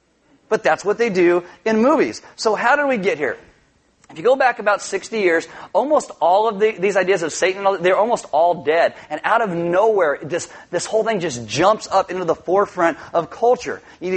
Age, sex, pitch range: 30-49, male, 175-220 Hz